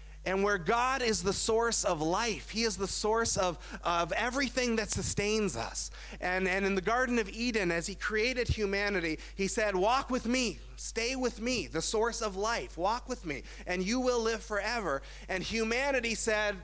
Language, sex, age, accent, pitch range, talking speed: English, male, 30-49, American, 145-210 Hz, 190 wpm